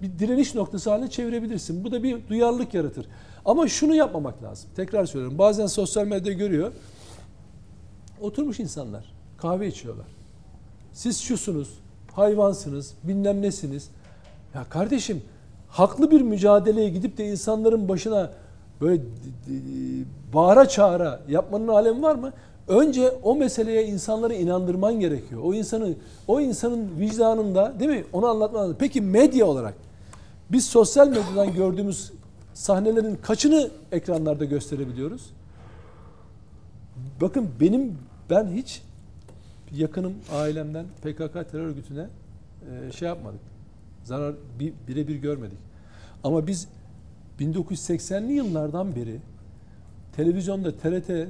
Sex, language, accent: male, Turkish, native